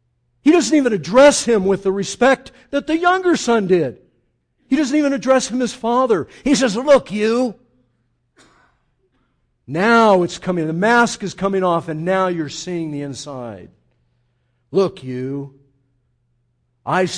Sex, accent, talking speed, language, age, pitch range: male, American, 145 wpm, English, 50-69, 125-205 Hz